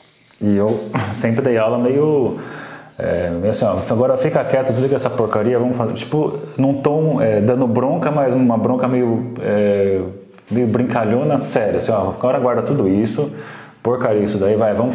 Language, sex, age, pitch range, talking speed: Portuguese, male, 30-49, 105-130 Hz, 175 wpm